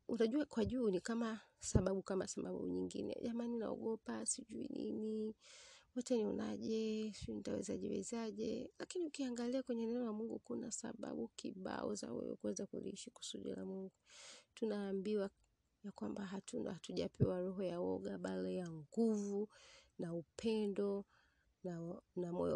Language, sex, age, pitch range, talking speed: Swahili, female, 30-49, 185-230 Hz, 135 wpm